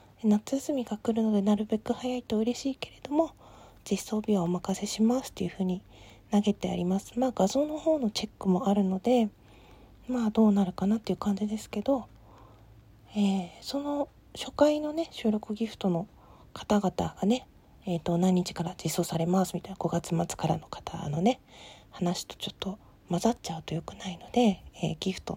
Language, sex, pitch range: Japanese, female, 175-220 Hz